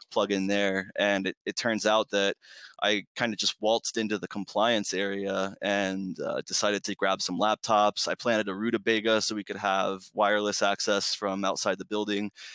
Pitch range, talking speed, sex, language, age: 100-115 Hz, 185 wpm, male, English, 20-39